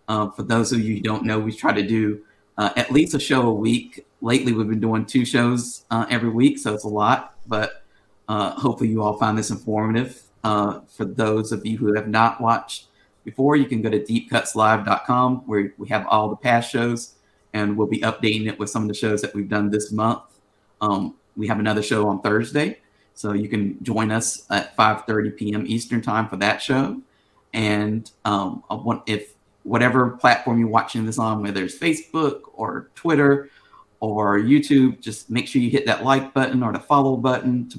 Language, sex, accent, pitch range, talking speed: English, male, American, 105-125 Hz, 205 wpm